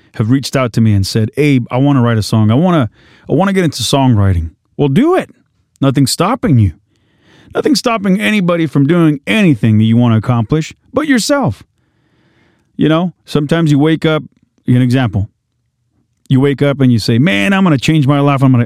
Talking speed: 205 wpm